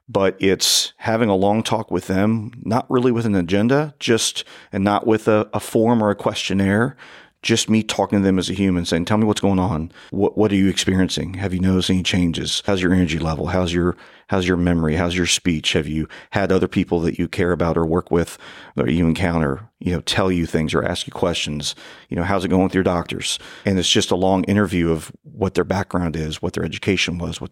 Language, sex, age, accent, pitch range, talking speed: English, male, 40-59, American, 85-100 Hz, 235 wpm